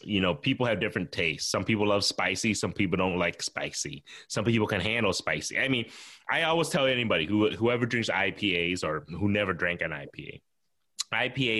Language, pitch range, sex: English, 85-110 Hz, male